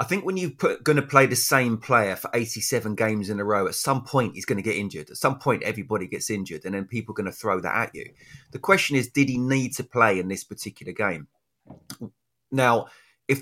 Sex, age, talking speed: male, 30-49, 240 wpm